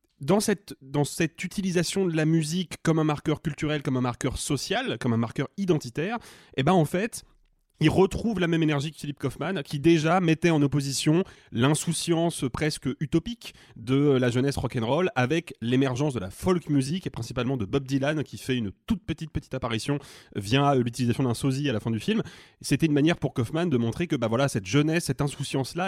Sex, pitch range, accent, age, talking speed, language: male, 130-170 Hz, French, 30-49, 195 wpm, French